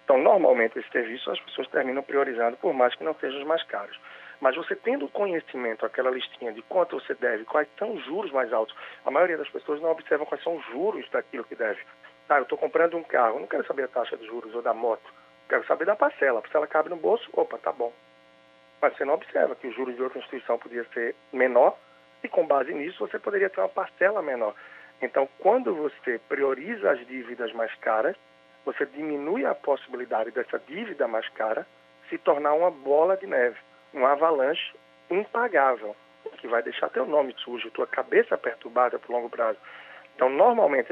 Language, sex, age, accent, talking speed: Portuguese, male, 40-59, Brazilian, 200 wpm